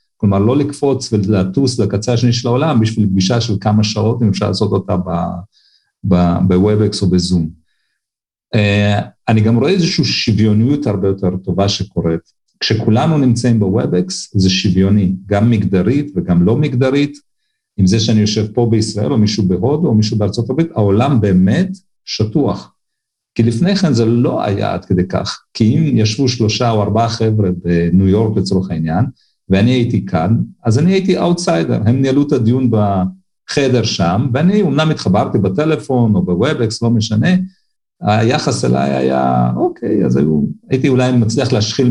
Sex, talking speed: male, 155 wpm